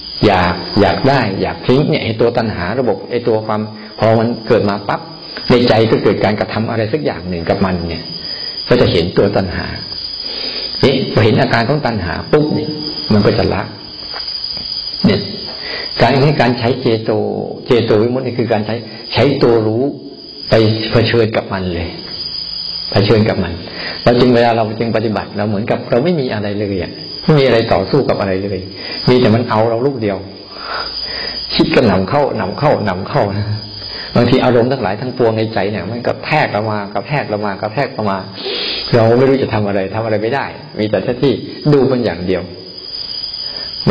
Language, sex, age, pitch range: Thai, male, 60-79, 105-125 Hz